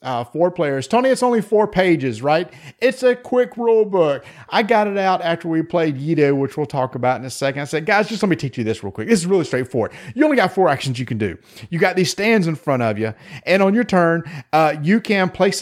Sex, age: male, 40-59